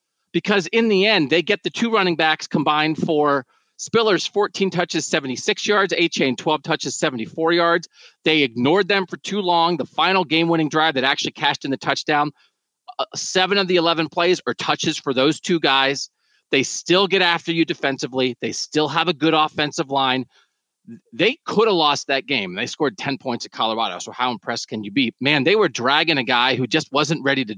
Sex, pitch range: male, 150-190 Hz